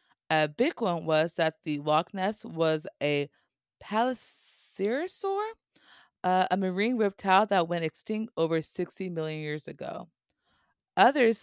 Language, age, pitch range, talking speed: English, 20-39, 165-205 Hz, 125 wpm